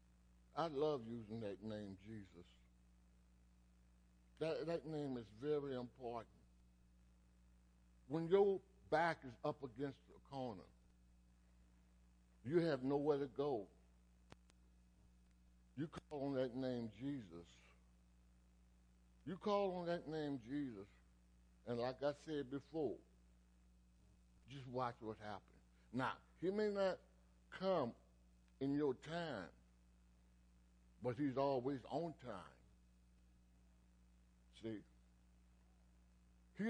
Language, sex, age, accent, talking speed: English, male, 60-79, American, 100 wpm